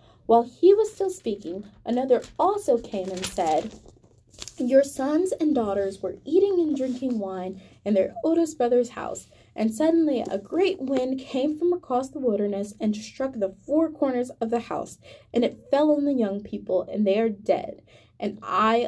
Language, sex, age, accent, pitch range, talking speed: English, female, 10-29, American, 190-275 Hz, 175 wpm